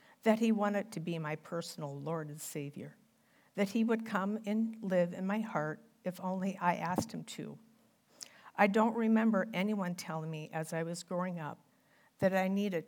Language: English